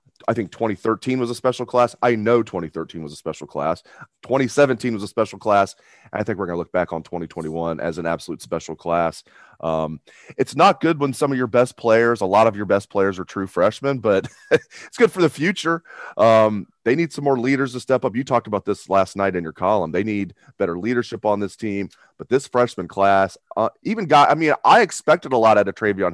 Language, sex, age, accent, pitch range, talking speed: English, male, 30-49, American, 95-130 Hz, 225 wpm